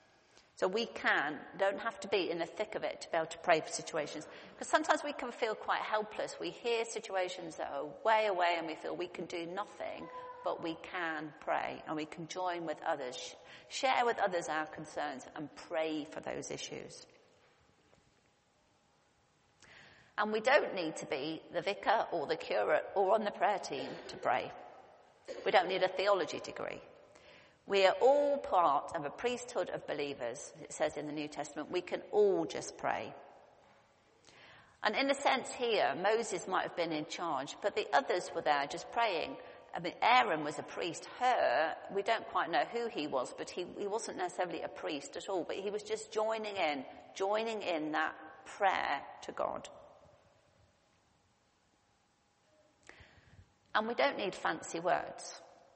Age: 40-59